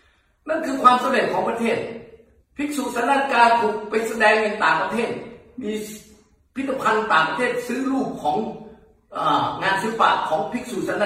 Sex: male